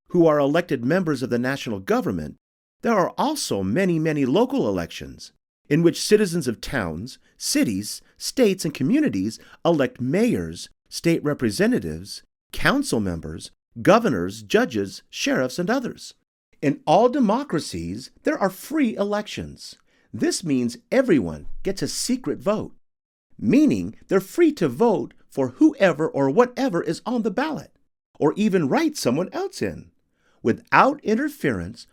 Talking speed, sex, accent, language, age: 130 wpm, male, American, English, 50-69